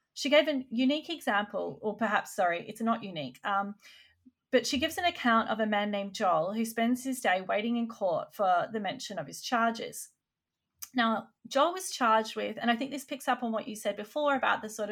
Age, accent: 30-49, Australian